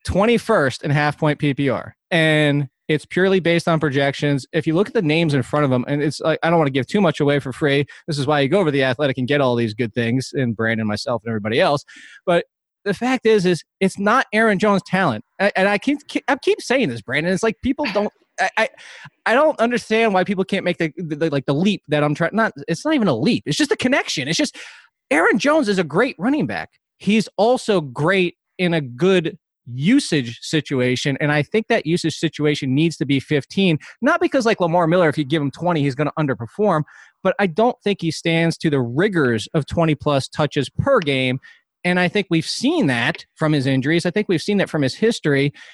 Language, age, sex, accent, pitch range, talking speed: English, 20-39, male, American, 145-205 Hz, 235 wpm